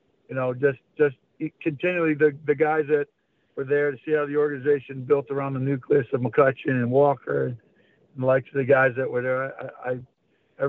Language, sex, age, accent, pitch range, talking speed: English, male, 50-69, American, 130-150 Hz, 210 wpm